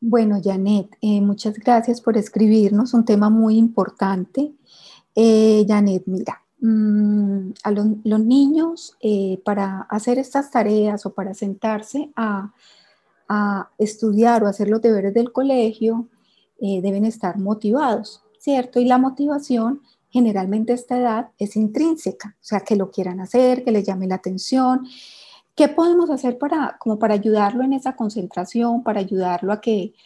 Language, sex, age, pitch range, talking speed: Spanish, female, 30-49, 200-245 Hz, 145 wpm